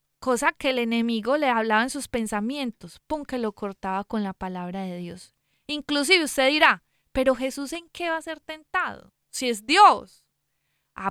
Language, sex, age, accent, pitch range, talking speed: Spanish, female, 20-39, Colombian, 215-290 Hz, 180 wpm